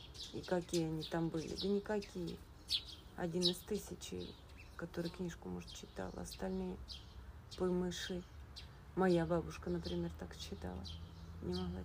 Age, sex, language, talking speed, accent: 40-59, female, Russian, 115 wpm, native